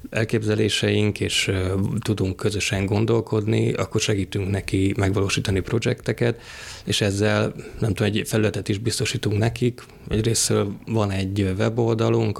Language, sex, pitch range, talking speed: Hungarian, male, 100-110 Hz, 110 wpm